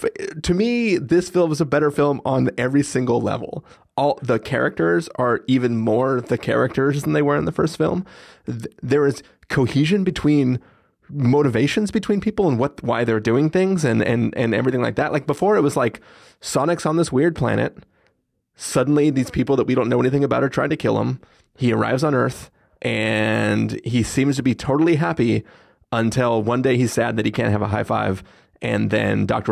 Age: 30-49